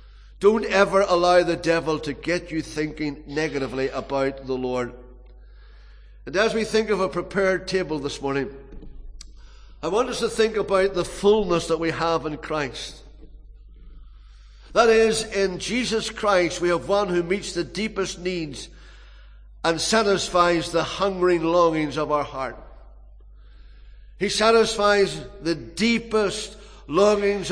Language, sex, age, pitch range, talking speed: English, male, 60-79, 155-200 Hz, 135 wpm